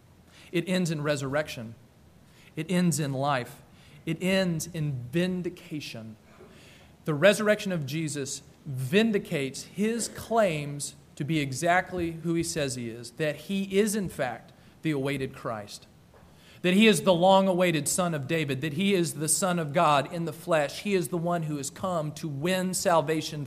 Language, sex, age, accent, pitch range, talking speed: English, male, 40-59, American, 155-200 Hz, 160 wpm